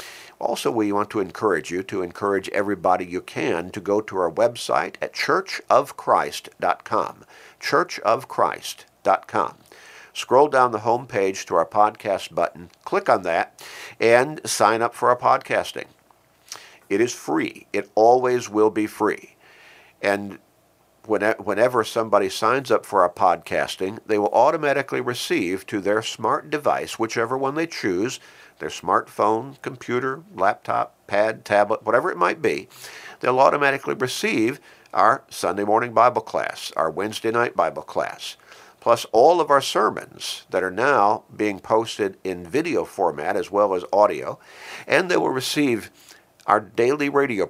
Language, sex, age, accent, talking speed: English, male, 50-69, American, 140 wpm